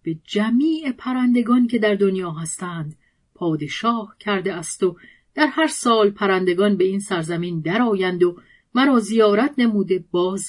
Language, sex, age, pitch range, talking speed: Persian, female, 40-59, 175-240 Hz, 135 wpm